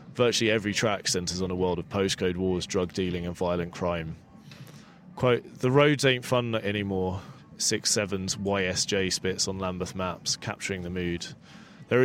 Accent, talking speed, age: British, 155 wpm, 30-49